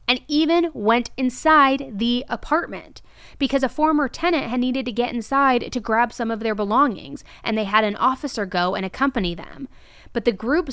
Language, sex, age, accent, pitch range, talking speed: English, female, 20-39, American, 185-255 Hz, 185 wpm